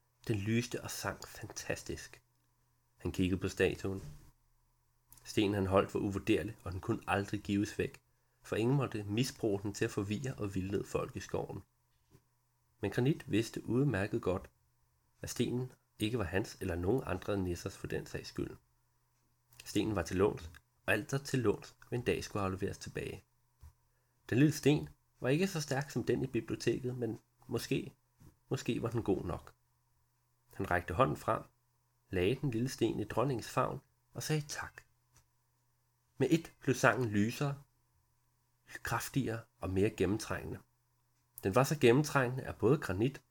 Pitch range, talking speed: 100-130 Hz, 155 wpm